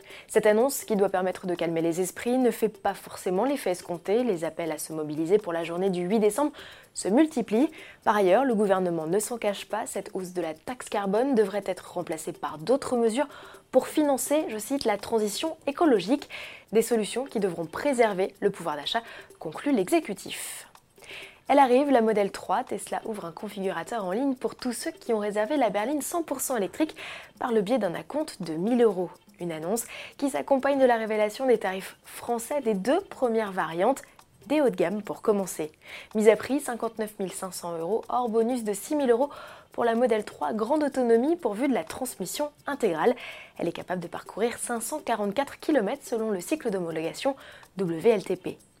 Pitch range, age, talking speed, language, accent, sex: 190-265 Hz, 20-39, 185 wpm, French, French, female